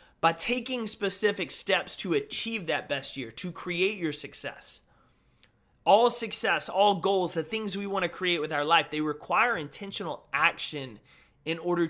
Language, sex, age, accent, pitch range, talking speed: English, male, 20-39, American, 150-190 Hz, 160 wpm